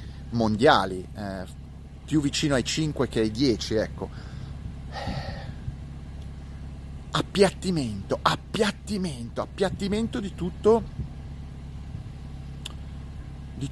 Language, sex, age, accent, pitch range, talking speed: Italian, male, 30-49, native, 100-140 Hz, 70 wpm